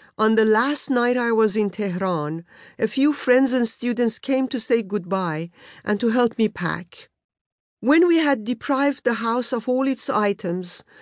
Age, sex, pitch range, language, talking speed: 50-69, female, 190-245 Hz, English, 175 wpm